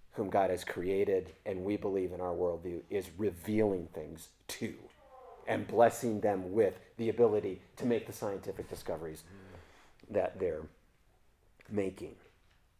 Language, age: English, 40-59